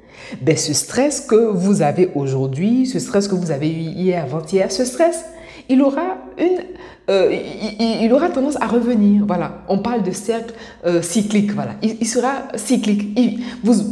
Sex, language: female, French